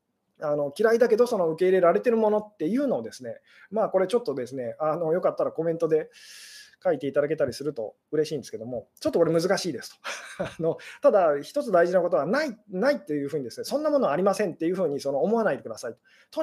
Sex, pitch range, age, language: male, 160-245 Hz, 20-39, Japanese